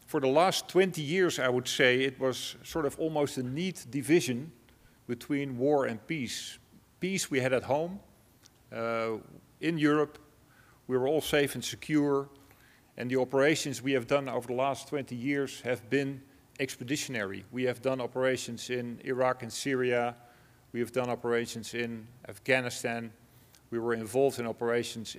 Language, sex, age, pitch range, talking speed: English, male, 40-59, 115-135 Hz, 160 wpm